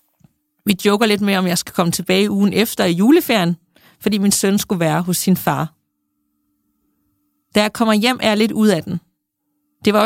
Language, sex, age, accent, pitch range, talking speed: Danish, female, 30-49, native, 175-220 Hz, 205 wpm